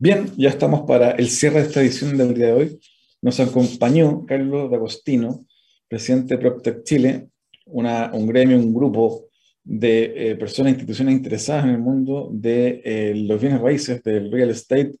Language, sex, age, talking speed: Spanish, male, 40-59, 170 wpm